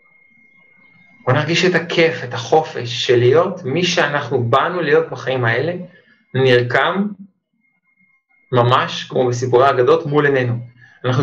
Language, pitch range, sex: Hebrew, 125-185 Hz, male